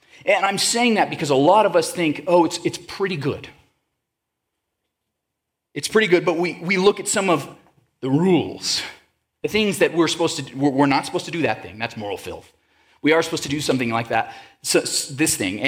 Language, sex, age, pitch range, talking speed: English, male, 30-49, 140-205 Hz, 205 wpm